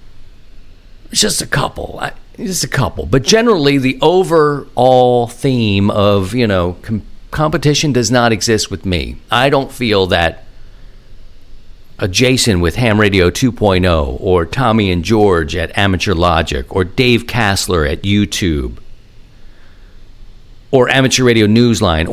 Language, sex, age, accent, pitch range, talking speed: English, male, 50-69, American, 95-125 Hz, 125 wpm